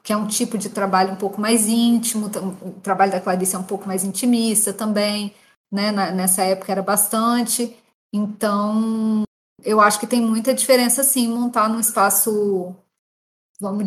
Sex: female